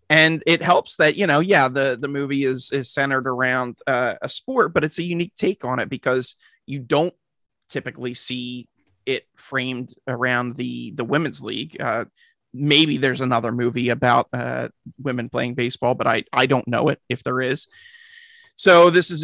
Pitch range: 125-150 Hz